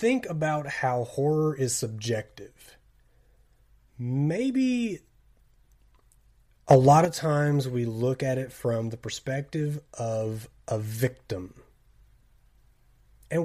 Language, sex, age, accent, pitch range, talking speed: English, male, 30-49, American, 115-150 Hz, 100 wpm